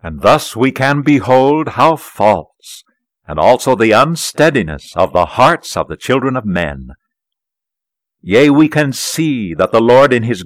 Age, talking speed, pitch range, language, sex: 60-79, 160 wpm, 115-165 Hz, English, male